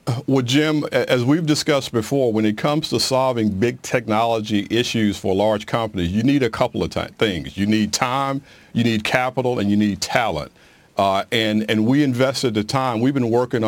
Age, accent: 50-69, American